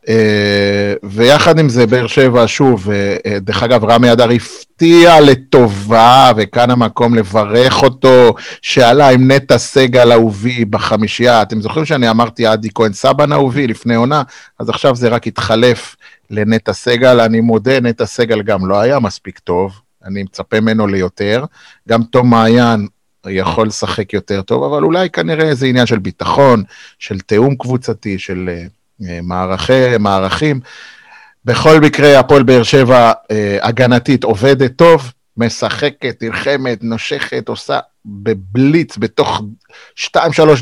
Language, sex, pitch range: Hebrew, male, 110-130 Hz